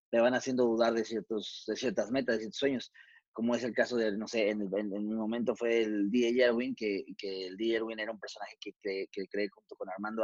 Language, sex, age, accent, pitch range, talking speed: Spanish, male, 30-49, Mexican, 105-130 Hz, 250 wpm